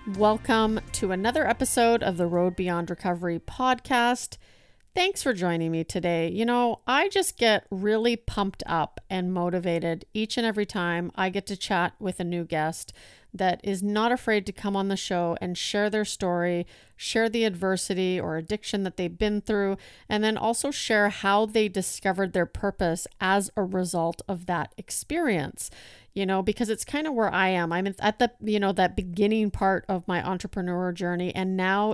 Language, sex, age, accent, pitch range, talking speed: English, female, 40-59, American, 180-210 Hz, 180 wpm